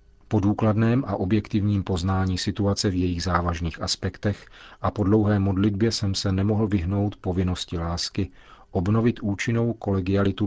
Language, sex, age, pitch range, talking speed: Czech, male, 40-59, 90-105 Hz, 130 wpm